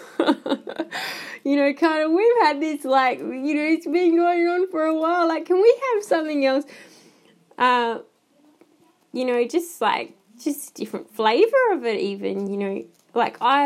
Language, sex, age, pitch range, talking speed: English, female, 20-39, 200-300 Hz, 170 wpm